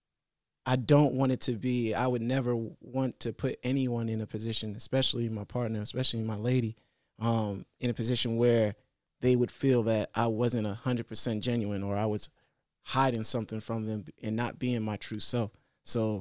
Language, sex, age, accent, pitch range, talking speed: English, male, 20-39, American, 115-130 Hz, 180 wpm